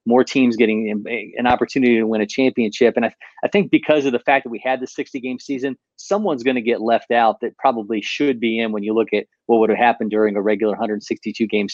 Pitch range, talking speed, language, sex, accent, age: 110-130 Hz, 245 wpm, English, male, American, 30-49